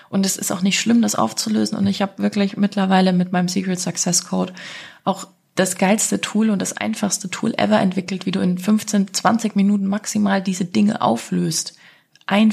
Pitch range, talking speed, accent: 175-195 Hz, 185 wpm, German